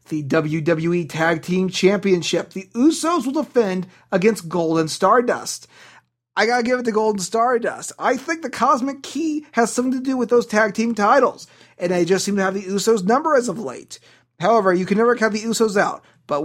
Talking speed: 195 wpm